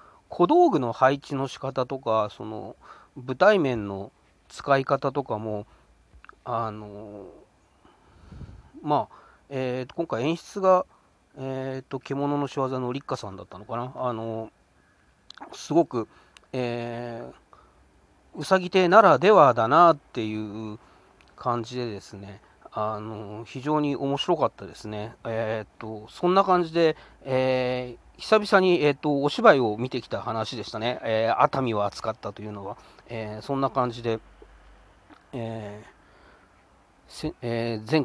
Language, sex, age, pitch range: Japanese, male, 40-59, 105-135 Hz